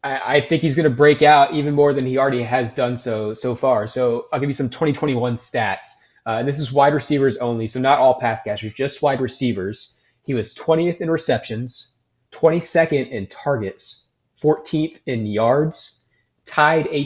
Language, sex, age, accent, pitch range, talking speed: English, male, 20-39, American, 115-145 Hz, 180 wpm